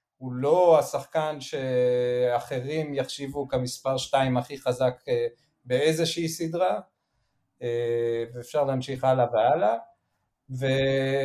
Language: Hebrew